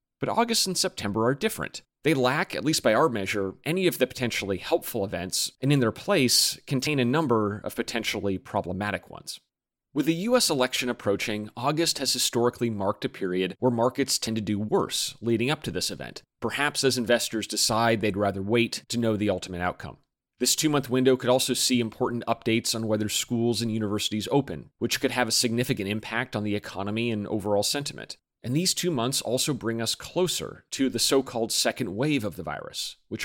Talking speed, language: 195 wpm, English